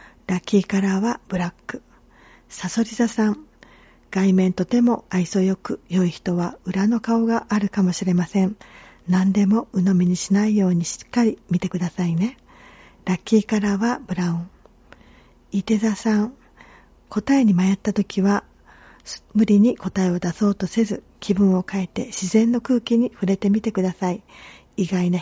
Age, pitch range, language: 40-59, 185-220 Hz, Japanese